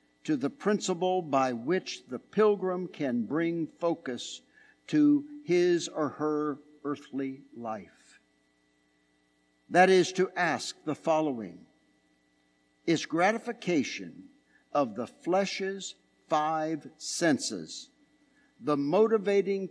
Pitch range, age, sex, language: 120-190 Hz, 60-79, male, English